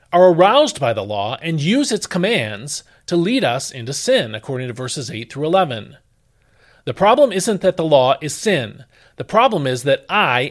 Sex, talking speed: male, 190 wpm